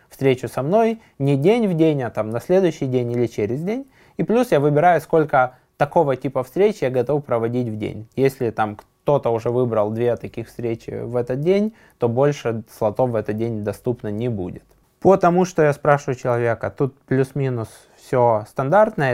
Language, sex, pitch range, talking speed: Russian, male, 115-145 Hz, 180 wpm